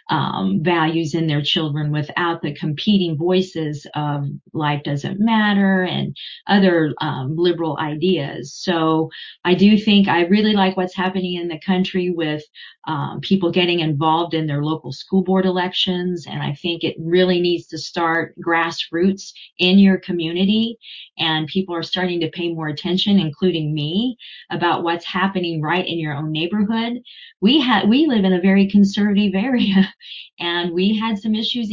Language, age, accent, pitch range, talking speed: English, 40-59, American, 165-200 Hz, 160 wpm